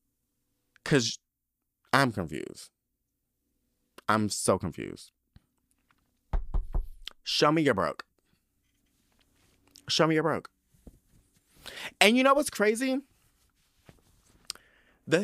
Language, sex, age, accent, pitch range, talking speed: English, male, 30-49, American, 100-165 Hz, 80 wpm